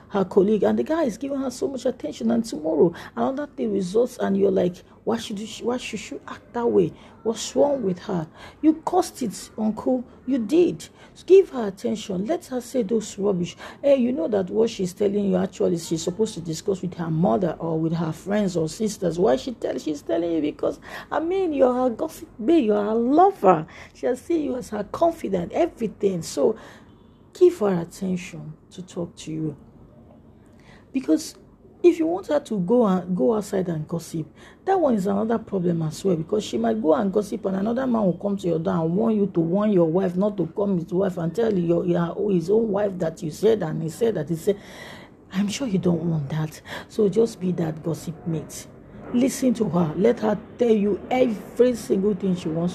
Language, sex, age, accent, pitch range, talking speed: English, female, 40-59, Nigerian, 170-235 Hz, 210 wpm